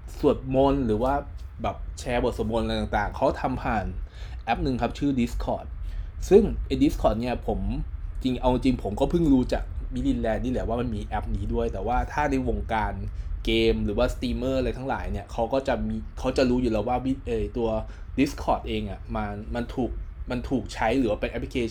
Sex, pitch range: male, 100-130 Hz